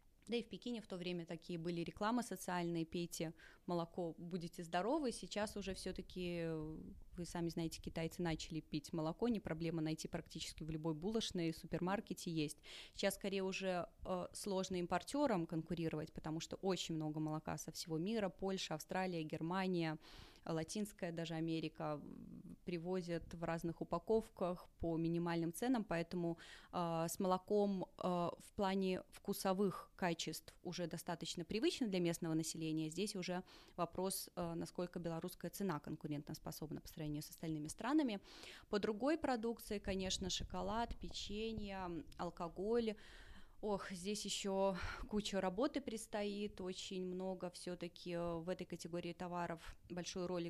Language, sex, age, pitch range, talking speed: English, female, 20-39, 165-195 Hz, 135 wpm